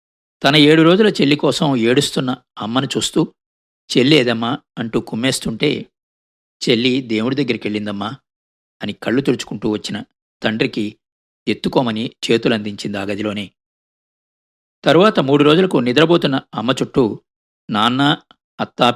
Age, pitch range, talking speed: 50-69, 105-130 Hz, 100 wpm